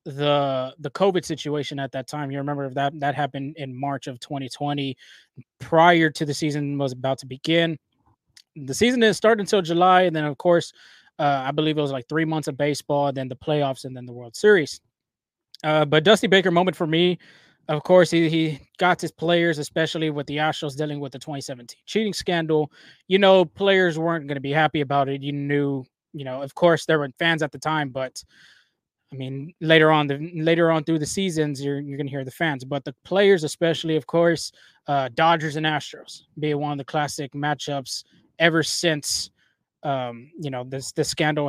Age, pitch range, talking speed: 20-39, 140-165 Hz, 200 wpm